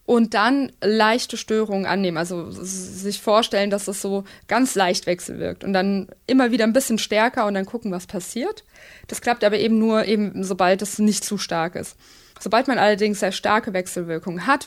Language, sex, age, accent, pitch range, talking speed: German, female, 20-39, German, 185-230 Hz, 185 wpm